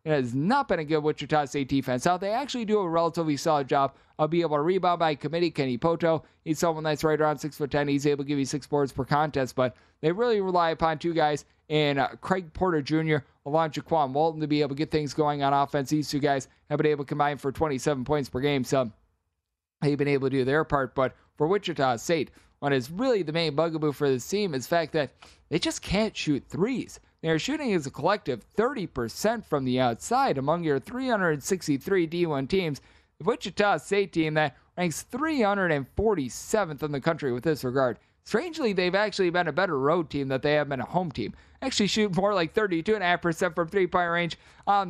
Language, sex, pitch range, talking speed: English, male, 145-180 Hz, 215 wpm